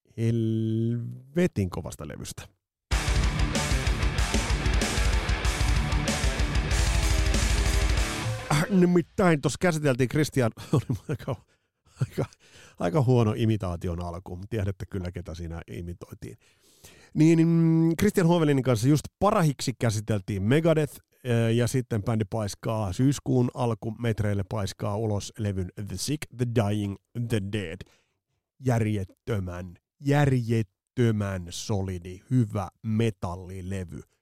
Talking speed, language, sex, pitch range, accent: 90 wpm, Finnish, male, 95-130 Hz, native